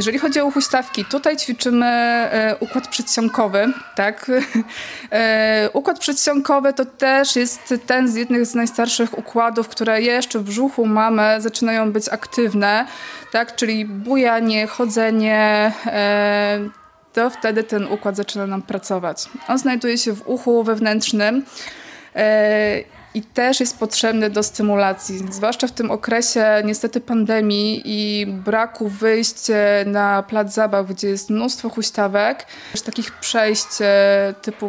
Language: Polish